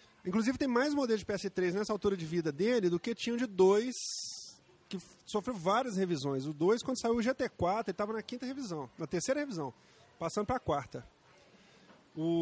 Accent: Brazilian